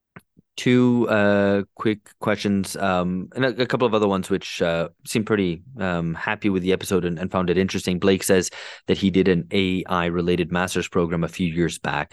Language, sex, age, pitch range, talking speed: English, male, 30-49, 80-95 Hz, 200 wpm